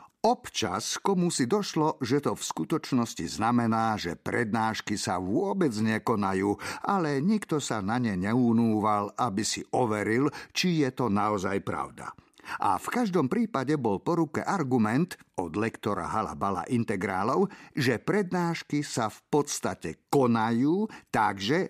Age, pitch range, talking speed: 50-69, 105-155 Hz, 125 wpm